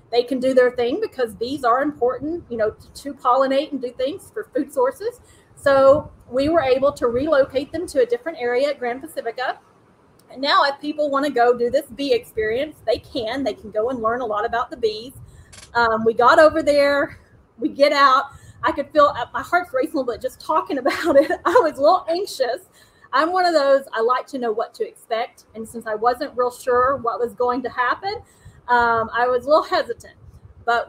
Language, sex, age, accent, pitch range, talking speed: English, female, 30-49, American, 245-315 Hz, 220 wpm